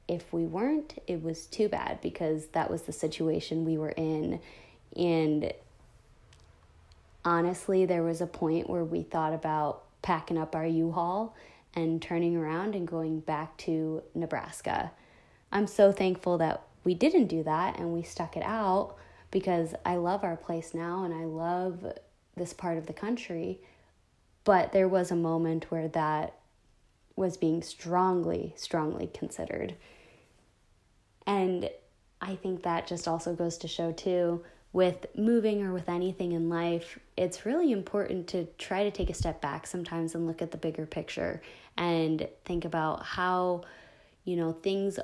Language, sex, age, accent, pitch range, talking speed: English, female, 20-39, American, 160-185 Hz, 155 wpm